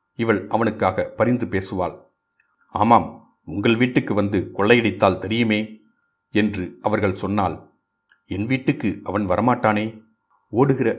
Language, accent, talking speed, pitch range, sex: Tamil, native, 100 wpm, 95-120 Hz, male